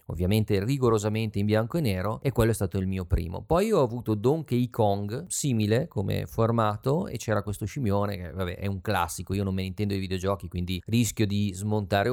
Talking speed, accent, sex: 205 wpm, native, male